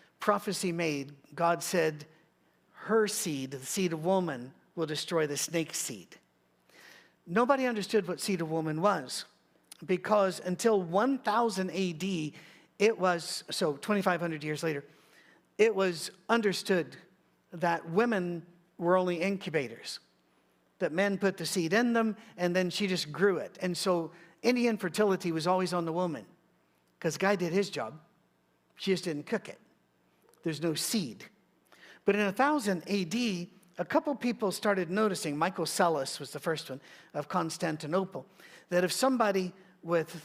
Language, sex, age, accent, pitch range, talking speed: English, male, 50-69, American, 165-200 Hz, 145 wpm